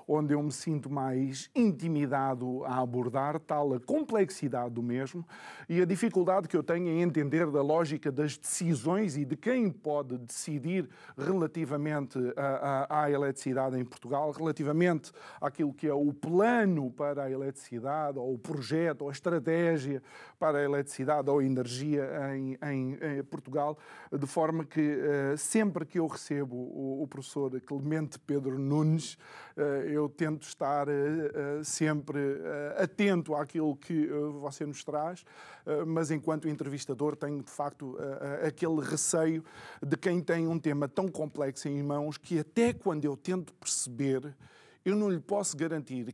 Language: Portuguese